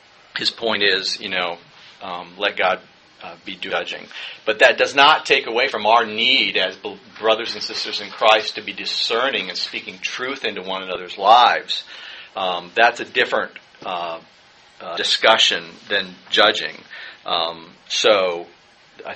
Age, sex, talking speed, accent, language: 40-59, male, 150 wpm, American, English